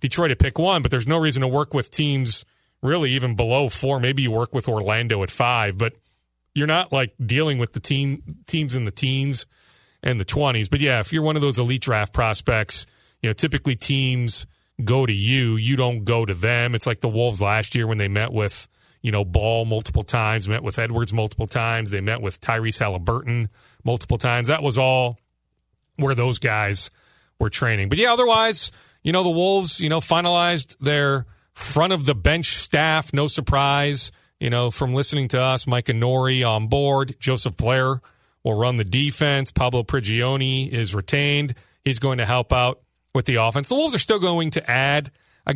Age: 40-59